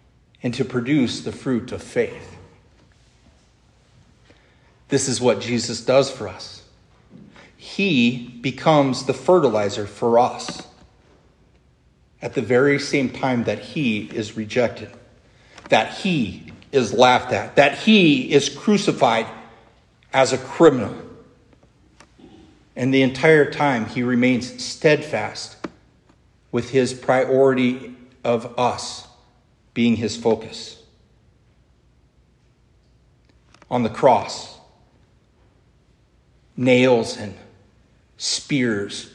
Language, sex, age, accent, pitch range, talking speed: English, male, 40-59, American, 115-135 Hz, 95 wpm